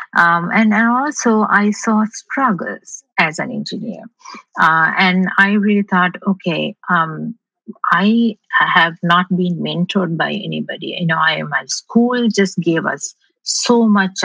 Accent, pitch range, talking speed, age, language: Indian, 165-210 Hz, 145 wpm, 50-69, English